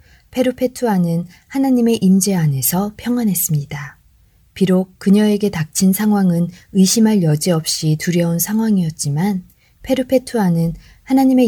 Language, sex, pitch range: Korean, female, 160-205 Hz